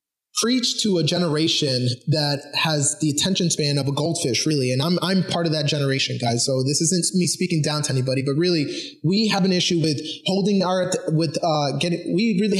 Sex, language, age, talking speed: male, English, 20-39, 205 wpm